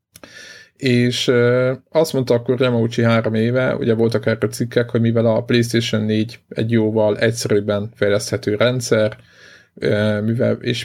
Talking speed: 120 wpm